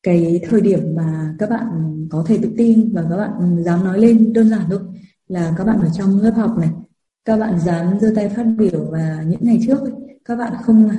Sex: female